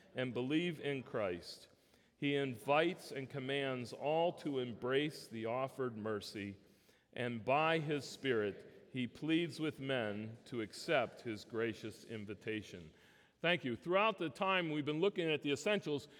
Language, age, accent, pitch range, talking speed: English, 40-59, American, 145-180 Hz, 140 wpm